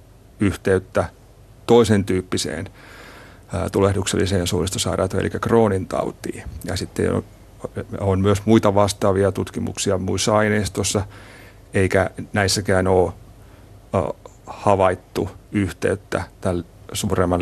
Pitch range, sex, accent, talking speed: 95-105 Hz, male, native, 85 wpm